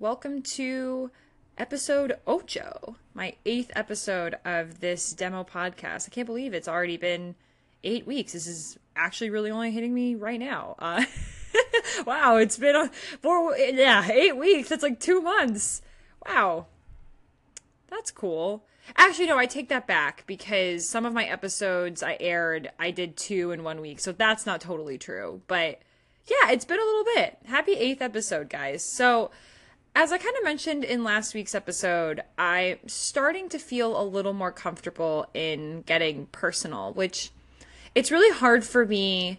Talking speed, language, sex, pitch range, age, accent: 160 wpm, English, female, 180-270 Hz, 20-39, American